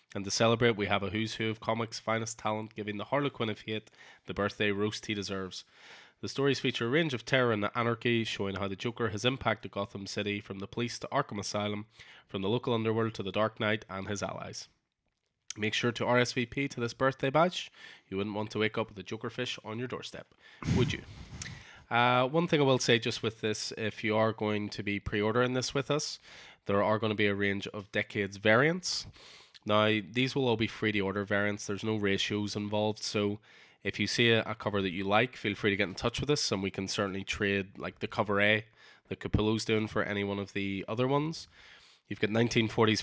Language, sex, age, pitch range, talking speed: English, male, 20-39, 100-120 Hz, 220 wpm